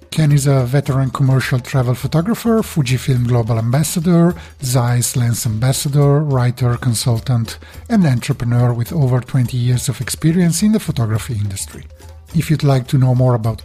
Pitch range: 115-150 Hz